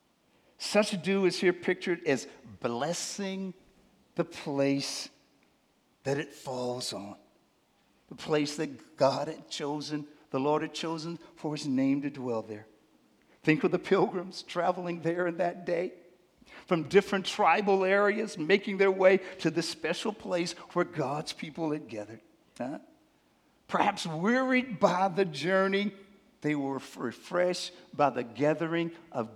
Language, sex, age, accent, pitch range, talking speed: English, male, 60-79, American, 135-180 Hz, 140 wpm